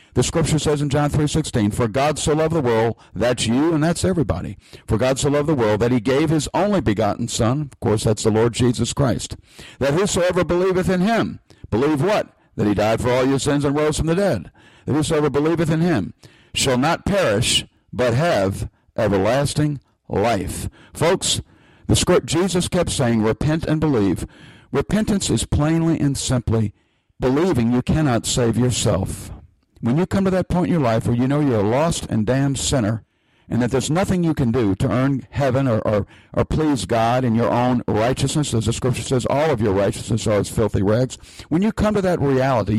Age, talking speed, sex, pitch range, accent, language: 60-79, 200 wpm, male, 110-150 Hz, American, English